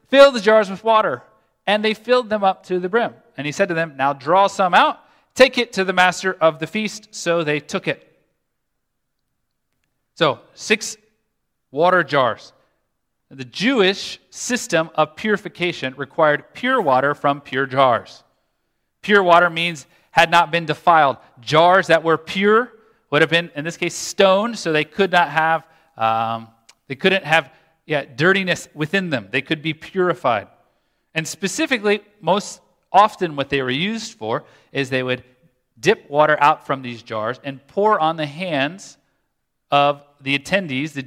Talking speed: 160 wpm